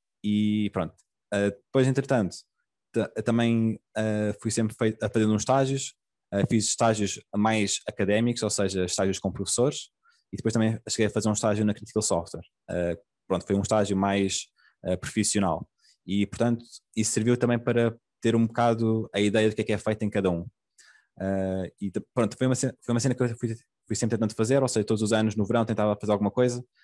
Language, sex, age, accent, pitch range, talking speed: Portuguese, male, 20-39, Portuguese, 95-115 Hz, 205 wpm